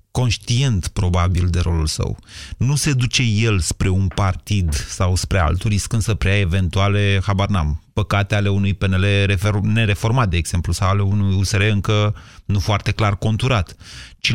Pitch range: 95-120 Hz